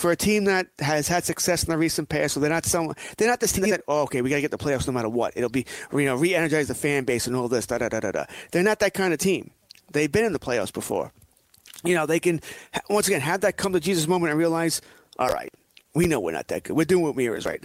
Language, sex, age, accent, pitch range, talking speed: English, male, 30-49, American, 140-190 Hz, 290 wpm